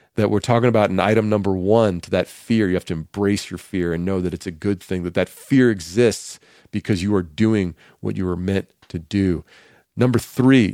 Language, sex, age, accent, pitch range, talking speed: English, male, 40-59, American, 100-135 Hz, 225 wpm